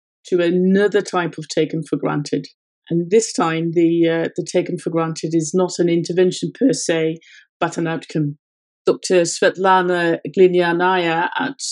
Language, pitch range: English, 160-185 Hz